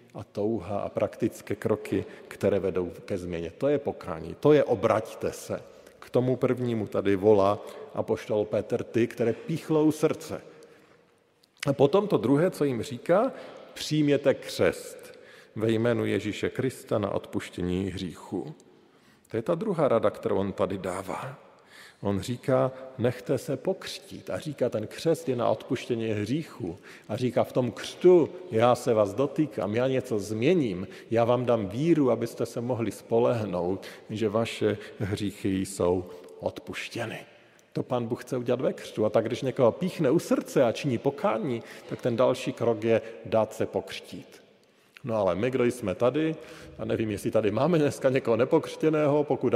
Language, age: Slovak, 50-69